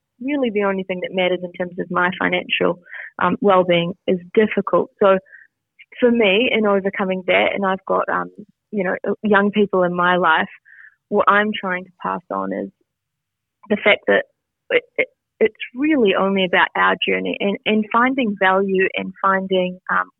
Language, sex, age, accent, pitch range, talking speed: English, female, 30-49, Australian, 180-220 Hz, 170 wpm